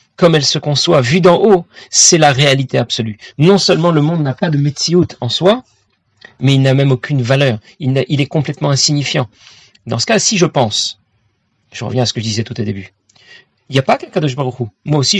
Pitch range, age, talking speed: 130-165 Hz, 40-59, 235 wpm